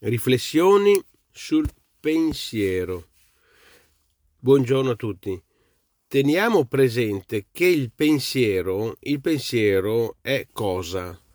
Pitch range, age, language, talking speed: 105-140 Hz, 40-59, Italian, 80 wpm